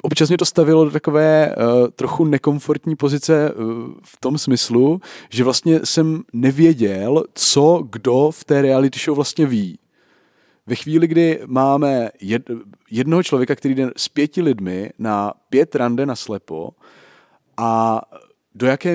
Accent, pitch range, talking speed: native, 125-150 Hz, 145 wpm